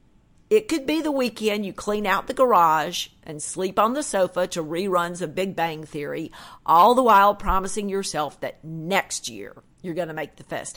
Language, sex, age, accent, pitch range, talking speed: English, female, 50-69, American, 160-230 Hz, 195 wpm